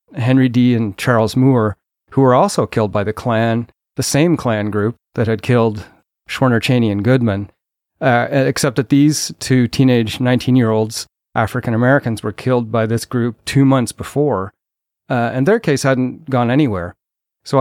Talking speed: 170 wpm